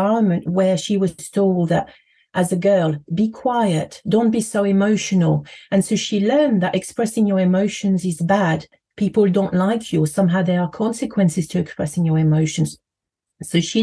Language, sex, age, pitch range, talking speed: English, female, 40-59, 170-205 Hz, 165 wpm